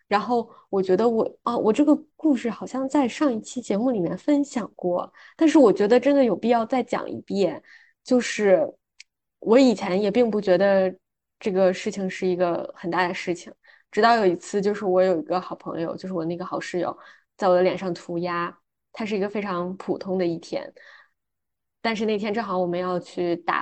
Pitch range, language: 175-215 Hz, Chinese